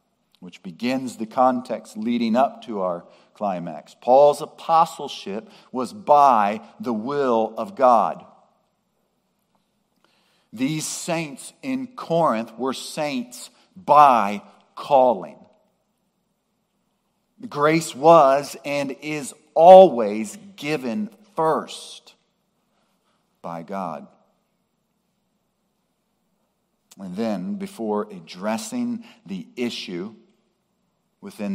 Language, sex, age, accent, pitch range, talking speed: English, male, 50-69, American, 135-215 Hz, 80 wpm